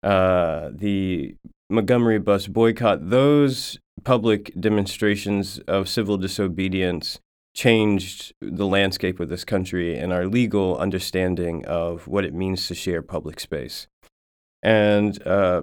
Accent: American